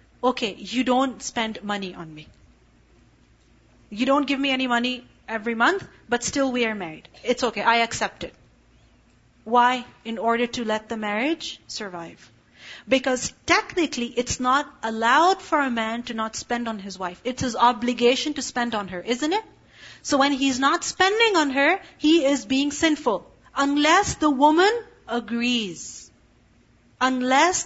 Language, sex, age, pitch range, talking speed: English, female, 30-49, 235-300 Hz, 155 wpm